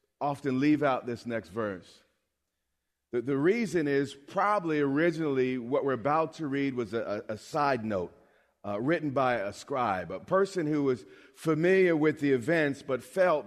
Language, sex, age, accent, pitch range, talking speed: English, male, 40-59, American, 130-160 Hz, 165 wpm